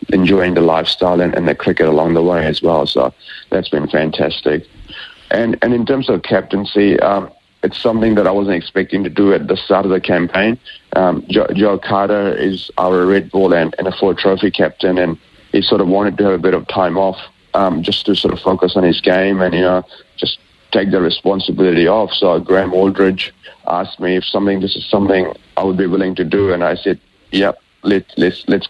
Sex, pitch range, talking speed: male, 90-100 Hz, 215 wpm